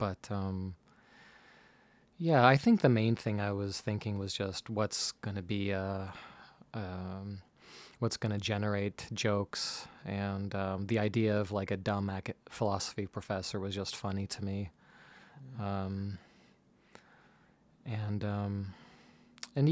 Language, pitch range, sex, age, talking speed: English, 100-115 Hz, male, 20-39, 125 wpm